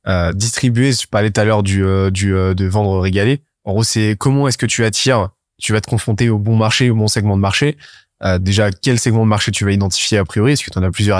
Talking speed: 275 wpm